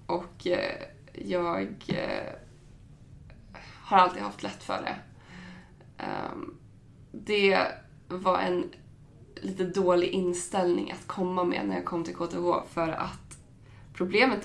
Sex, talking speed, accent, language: female, 105 wpm, Swedish, English